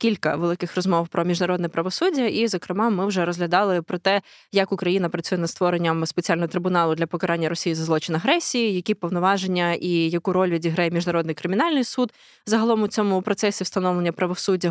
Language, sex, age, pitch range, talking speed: Ukrainian, female, 20-39, 175-210 Hz, 165 wpm